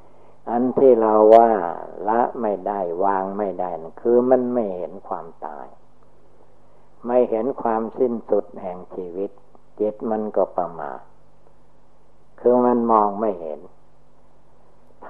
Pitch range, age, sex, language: 95-120 Hz, 60-79, male, Thai